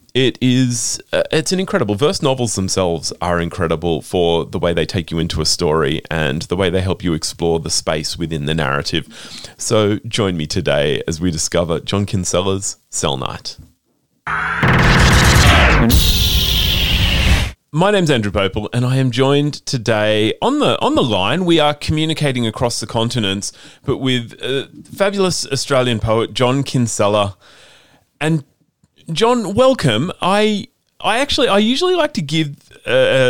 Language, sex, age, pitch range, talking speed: English, male, 30-49, 90-140 Hz, 150 wpm